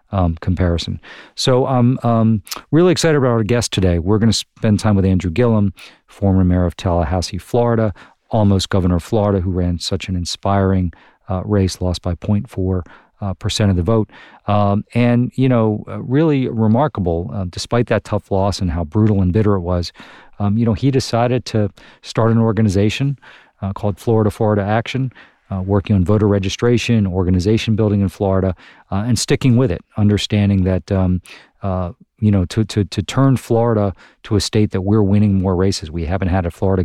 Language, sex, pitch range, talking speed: English, male, 95-110 Hz, 185 wpm